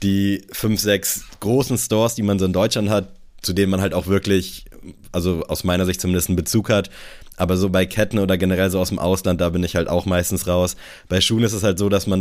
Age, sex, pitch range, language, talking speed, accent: 20-39, male, 90-100 Hz, German, 245 wpm, German